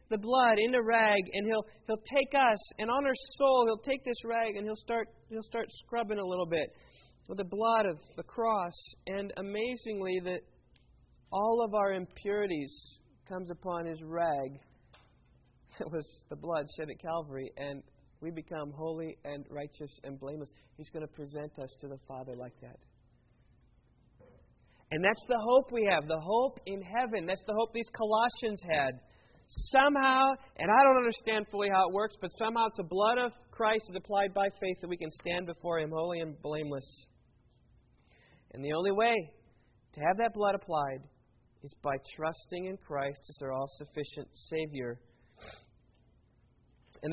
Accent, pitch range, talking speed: American, 150-220 Hz, 170 wpm